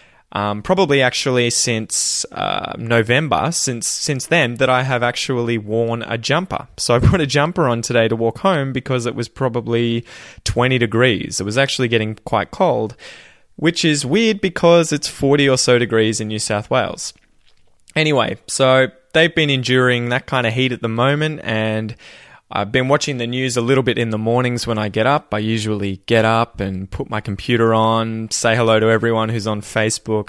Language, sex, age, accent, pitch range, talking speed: English, male, 20-39, Australian, 105-130 Hz, 190 wpm